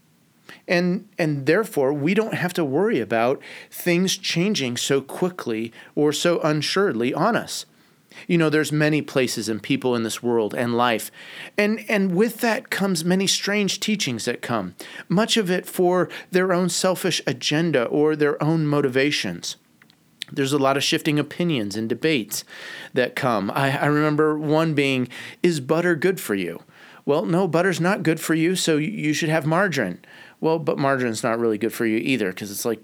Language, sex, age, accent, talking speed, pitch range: English, male, 30-49, American, 175 wpm, 125-175 Hz